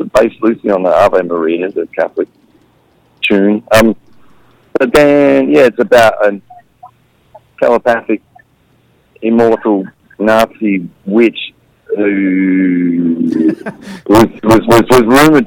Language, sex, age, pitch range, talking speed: English, male, 40-59, 105-130 Hz, 100 wpm